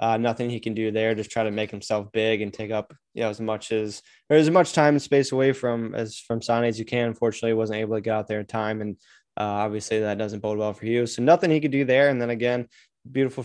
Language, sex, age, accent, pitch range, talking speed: English, male, 20-39, American, 110-125 Hz, 280 wpm